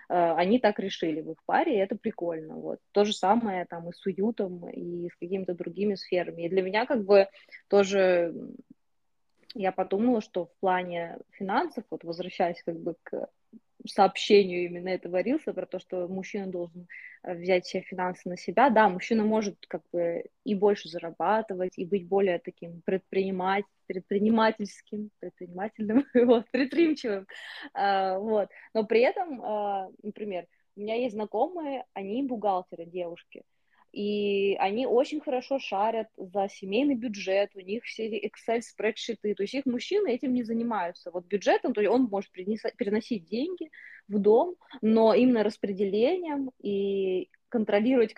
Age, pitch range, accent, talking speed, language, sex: 20-39, 185-235 Hz, native, 140 wpm, Russian, female